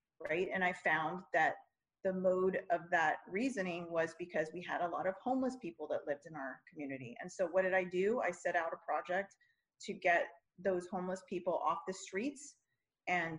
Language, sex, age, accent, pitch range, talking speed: English, female, 30-49, American, 175-200 Hz, 195 wpm